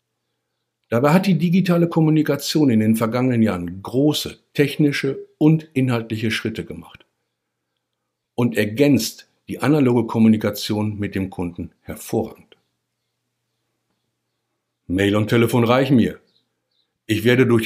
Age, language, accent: 60-79, German, German